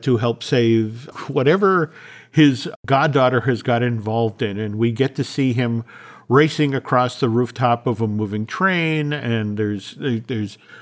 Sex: male